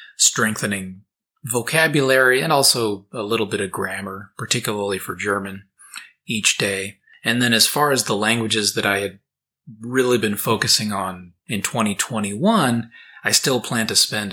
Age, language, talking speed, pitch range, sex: 30-49, English, 145 wpm, 100-125 Hz, male